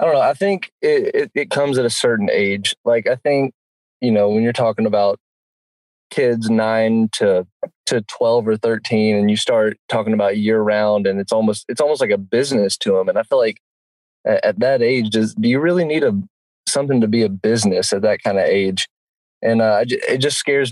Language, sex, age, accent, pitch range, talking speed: English, male, 20-39, American, 110-150 Hz, 215 wpm